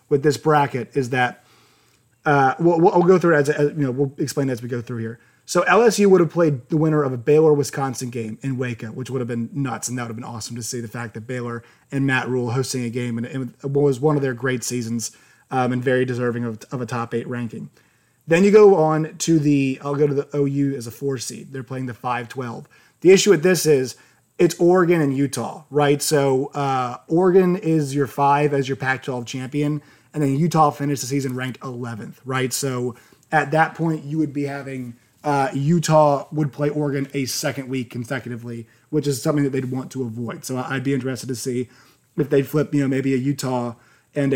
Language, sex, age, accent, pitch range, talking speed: English, male, 30-49, American, 125-150 Hz, 225 wpm